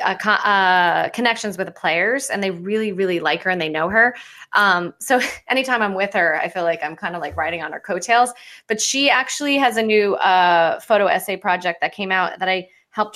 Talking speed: 225 wpm